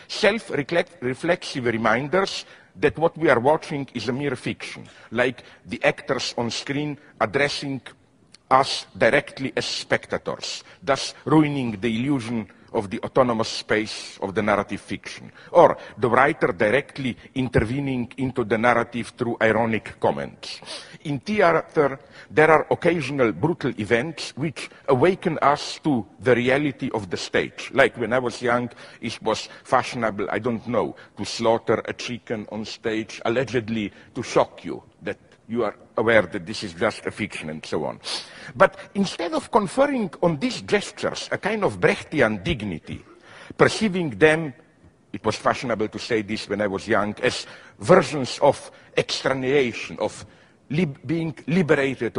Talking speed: 145 wpm